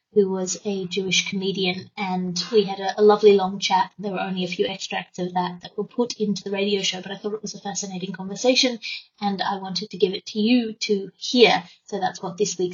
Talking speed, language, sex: 245 wpm, English, female